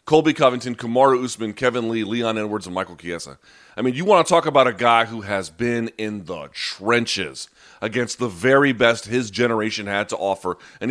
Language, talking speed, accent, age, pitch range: English, 200 wpm, American, 30-49, 115-150 Hz